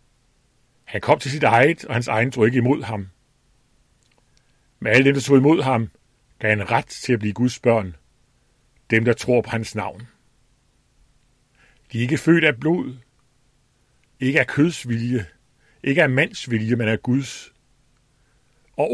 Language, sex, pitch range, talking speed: Danish, male, 115-135 Hz, 155 wpm